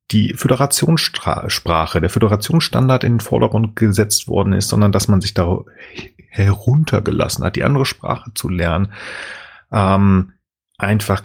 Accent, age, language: German, 40-59, German